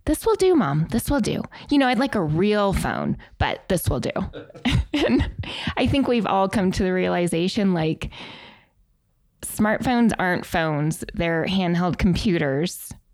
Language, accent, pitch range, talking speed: English, American, 160-210 Hz, 155 wpm